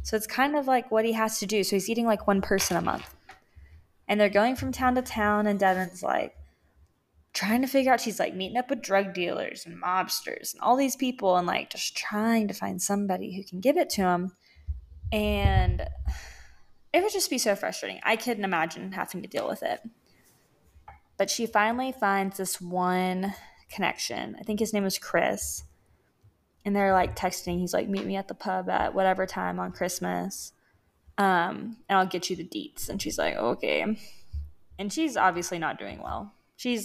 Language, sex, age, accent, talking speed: English, female, 20-39, American, 195 wpm